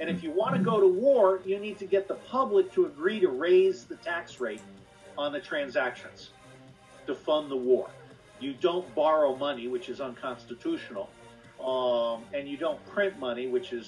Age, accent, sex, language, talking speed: 50-69, American, male, English, 185 wpm